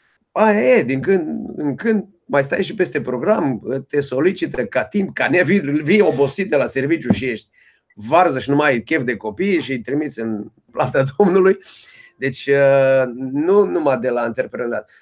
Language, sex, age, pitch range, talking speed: Romanian, male, 30-49, 125-180 Hz, 175 wpm